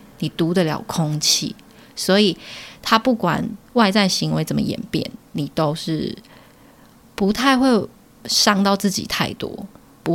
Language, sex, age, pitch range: Chinese, female, 20-39, 170-230 Hz